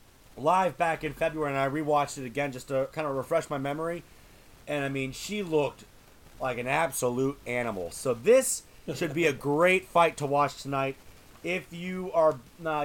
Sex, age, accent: male, 30-49, American